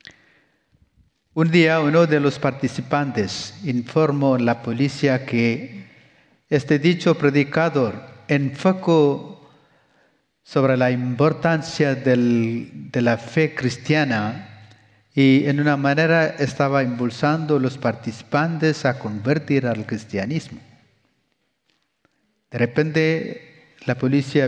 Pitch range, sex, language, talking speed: 120-150 Hz, male, Spanish, 100 wpm